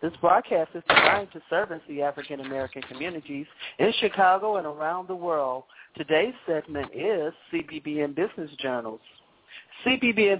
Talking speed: 135 wpm